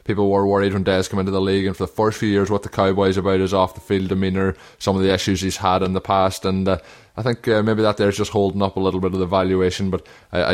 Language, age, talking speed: English, 20-39, 300 wpm